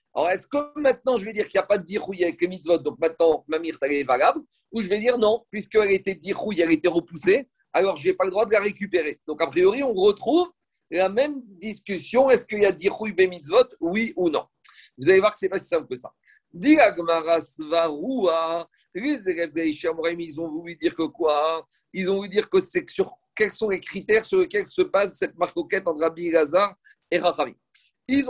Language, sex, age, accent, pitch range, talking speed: French, male, 50-69, French, 170-230 Hz, 215 wpm